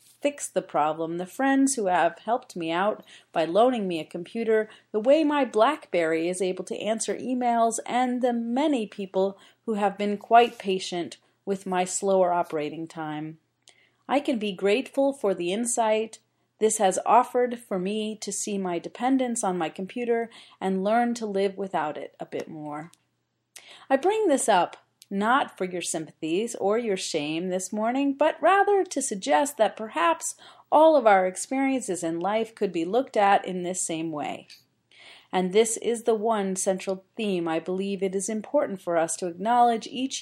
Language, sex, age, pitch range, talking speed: English, female, 30-49, 185-245 Hz, 170 wpm